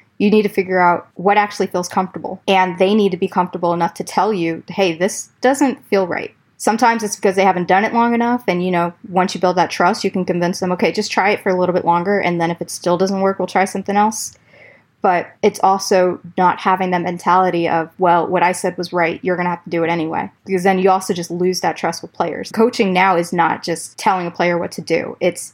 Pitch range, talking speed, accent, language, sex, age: 175-195 Hz, 255 wpm, American, English, female, 20-39